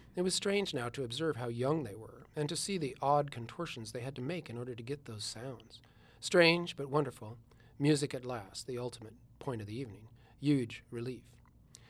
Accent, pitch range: American, 120-145 Hz